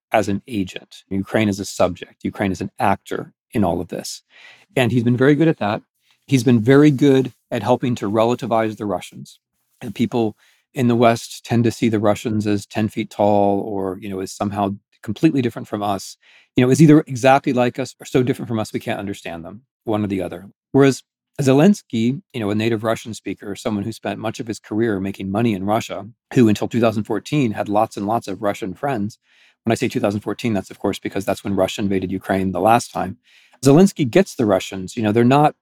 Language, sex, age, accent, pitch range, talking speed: English, male, 40-59, American, 100-130 Hz, 215 wpm